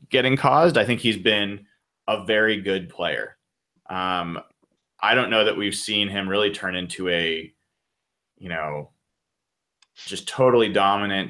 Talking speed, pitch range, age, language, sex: 145 wpm, 90-105 Hz, 20-39, English, male